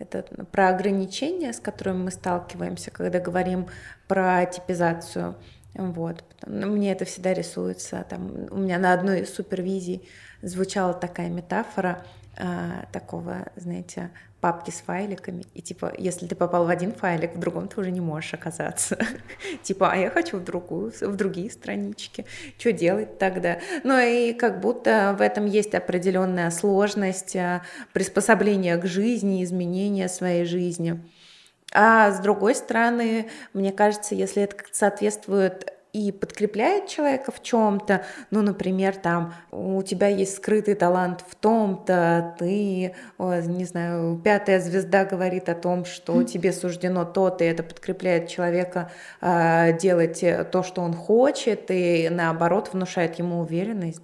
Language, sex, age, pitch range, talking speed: Russian, female, 20-39, 175-205 Hz, 140 wpm